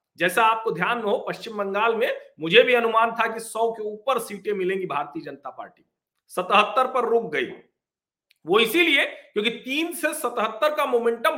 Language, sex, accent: Hindi, male, native